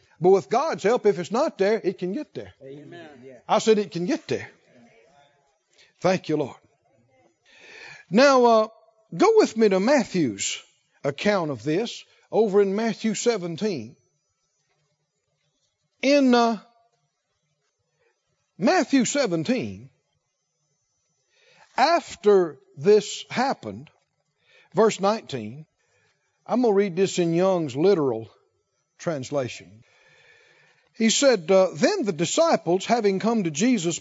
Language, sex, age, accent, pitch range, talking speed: English, male, 60-79, American, 170-240 Hz, 110 wpm